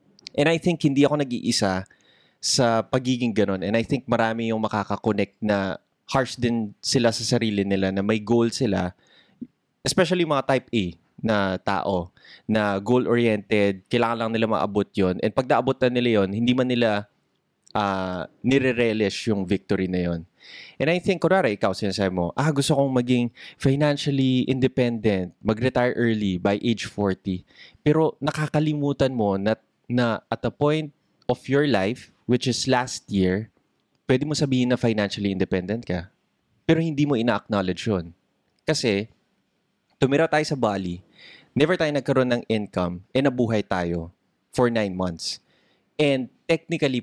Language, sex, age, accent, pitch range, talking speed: Filipino, male, 20-39, native, 100-135 Hz, 150 wpm